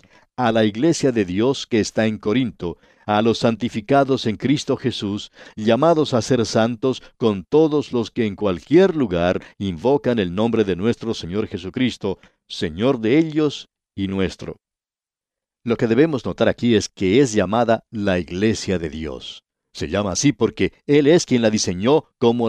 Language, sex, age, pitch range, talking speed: Spanish, male, 60-79, 100-130 Hz, 165 wpm